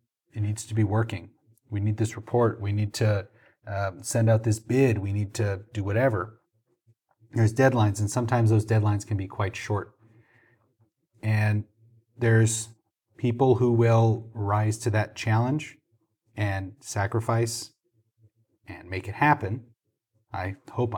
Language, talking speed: English, 140 wpm